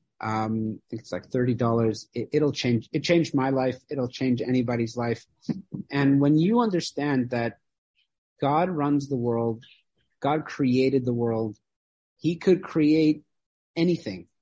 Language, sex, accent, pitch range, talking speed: English, male, American, 125-165 Hz, 130 wpm